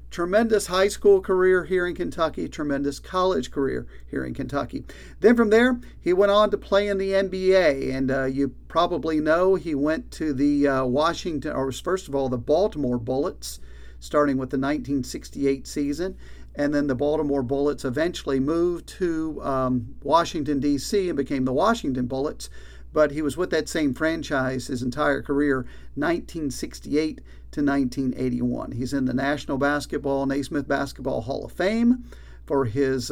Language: English